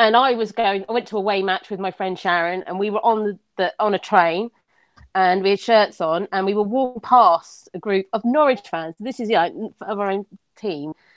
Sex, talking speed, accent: female, 235 wpm, British